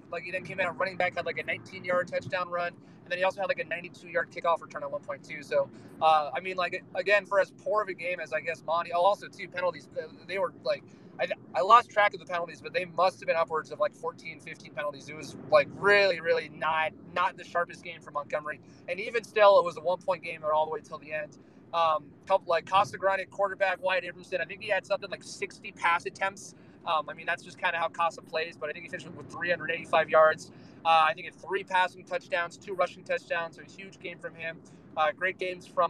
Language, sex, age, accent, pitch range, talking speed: English, male, 30-49, American, 160-190 Hz, 250 wpm